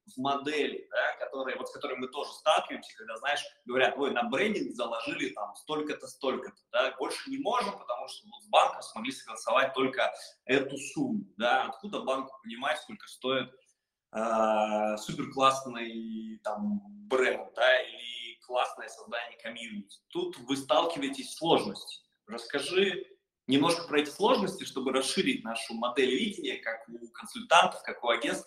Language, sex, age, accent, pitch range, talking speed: Russian, male, 20-39, native, 130-210 Hz, 150 wpm